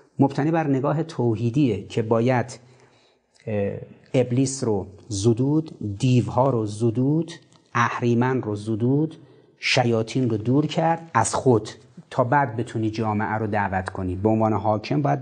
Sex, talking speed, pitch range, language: male, 125 wpm, 105-145 Hz, Persian